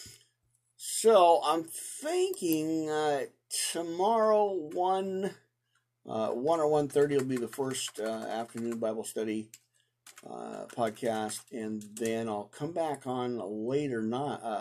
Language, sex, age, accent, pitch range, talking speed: English, male, 50-69, American, 110-145 Hz, 120 wpm